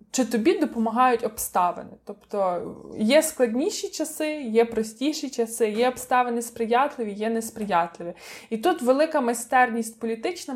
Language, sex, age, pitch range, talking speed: Ukrainian, female, 20-39, 215-250 Hz, 120 wpm